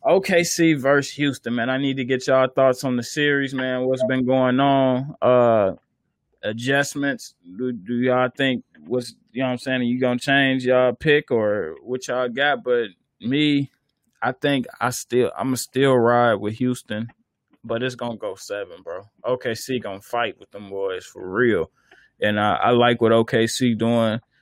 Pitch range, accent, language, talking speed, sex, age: 115-130 Hz, American, English, 190 wpm, male, 20-39